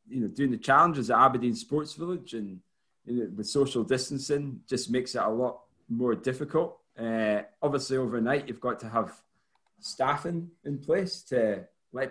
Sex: male